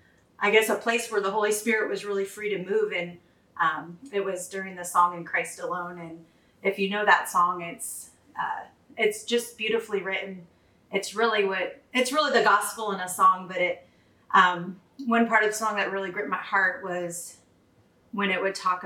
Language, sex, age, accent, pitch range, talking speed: English, female, 30-49, American, 175-210 Hz, 200 wpm